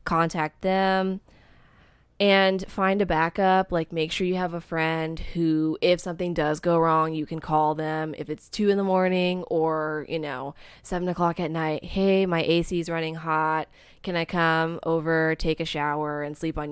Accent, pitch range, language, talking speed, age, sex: American, 155-170 Hz, English, 185 wpm, 20-39, female